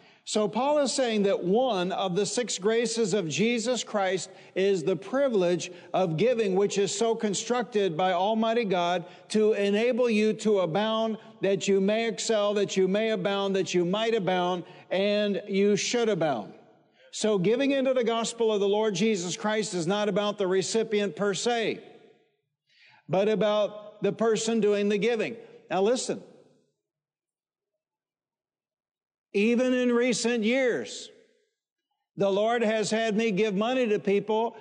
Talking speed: 145 wpm